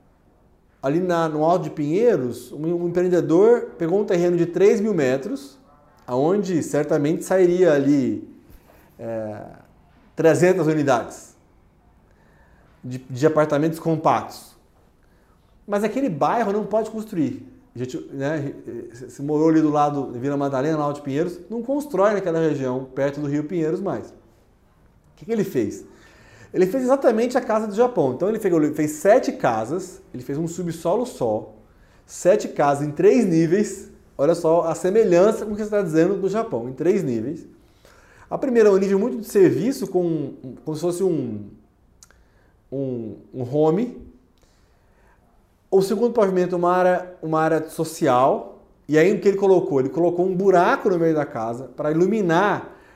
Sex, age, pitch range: male, 30-49, 145-205 Hz